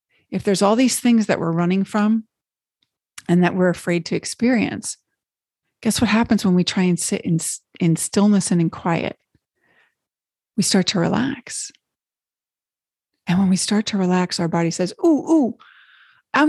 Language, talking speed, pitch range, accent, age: English, 165 wpm, 175-230 Hz, American, 40-59